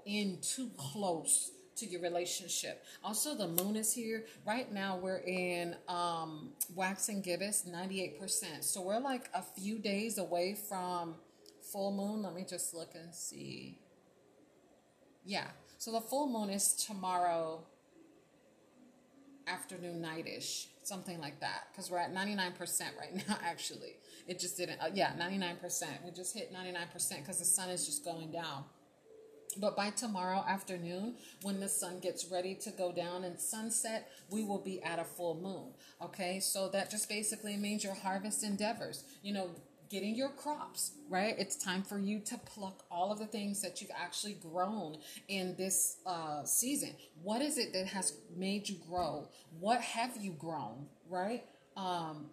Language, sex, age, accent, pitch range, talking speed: English, female, 30-49, American, 180-220 Hz, 160 wpm